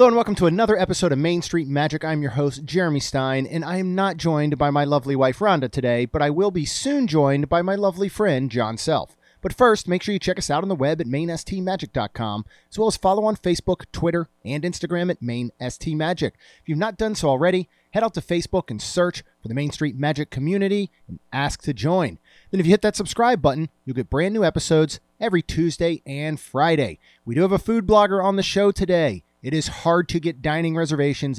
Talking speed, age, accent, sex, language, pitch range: 225 wpm, 30-49, American, male, English, 140-185 Hz